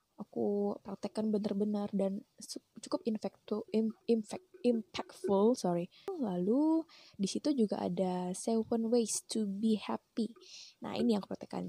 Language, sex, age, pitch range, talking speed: Indonesian, female, 10-29, 190-225 Hz, 130 wpm